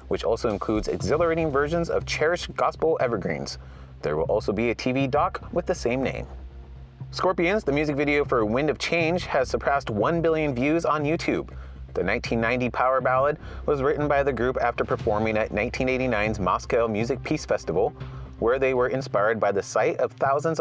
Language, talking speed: English, 180 wpm